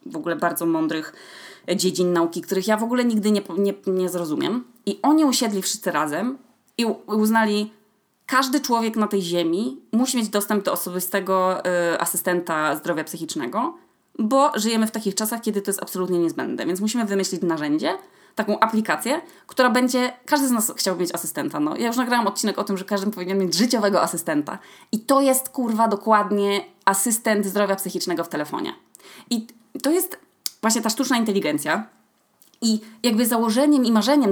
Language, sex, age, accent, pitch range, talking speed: Polish, female, 20-39, native, 175-230 Hz, 165 wpm